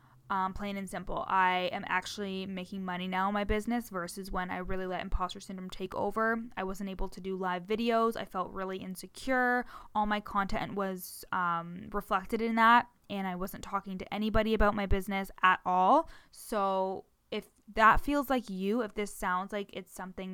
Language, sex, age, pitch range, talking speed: English, female, 20-39, 190-225 Hz, 190 wpm